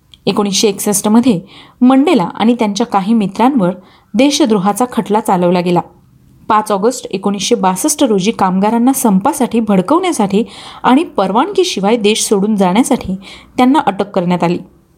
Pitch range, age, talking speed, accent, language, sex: 195-255 Hz, 30-49, 110 wpm, native, Marathi, female